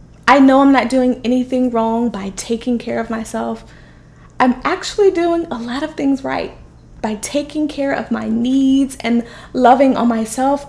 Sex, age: female, 20-39